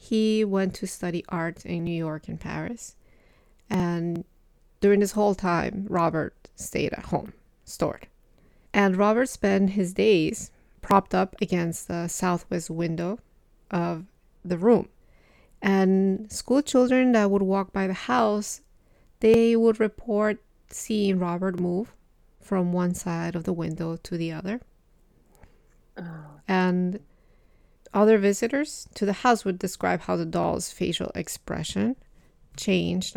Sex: female